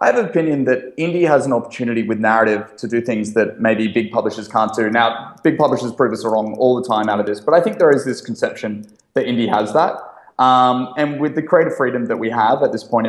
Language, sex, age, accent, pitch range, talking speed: English, male, 20-39, Australian, 110-140 Hz, 250 wpm